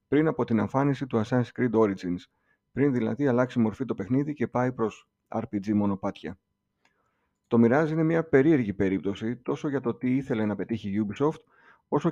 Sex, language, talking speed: male, Greek, 175 wpm